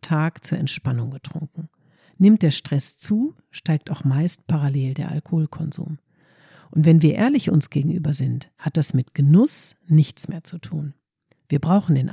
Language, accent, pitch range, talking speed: German, German, 145-175 Hz, 160 wpm